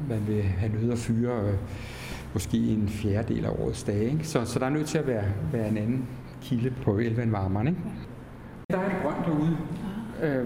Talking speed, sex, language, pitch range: 190 wpm, male, Danish, 115-155 Hz